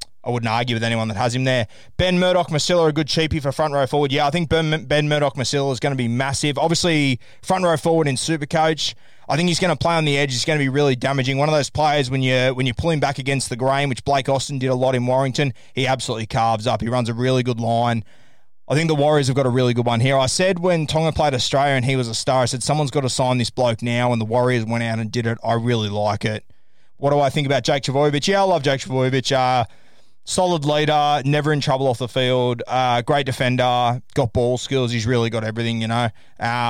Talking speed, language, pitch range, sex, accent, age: 260 wpm, English, 120-145 Hz, male, Australian, 20-39